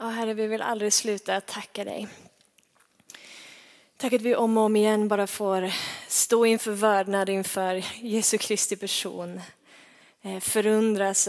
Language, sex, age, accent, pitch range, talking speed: Swedish, female, 20-39, native, 195-215 Hz, 135 wpm